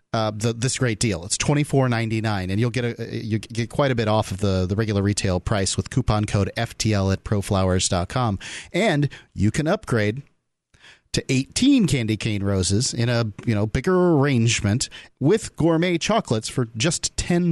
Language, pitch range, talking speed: English, 105-130 Hz, 175 wpm